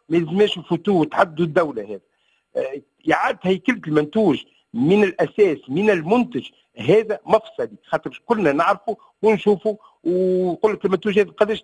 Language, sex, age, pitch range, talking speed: Arabic, male, 50-69, 170-225 Hz, 125 wpm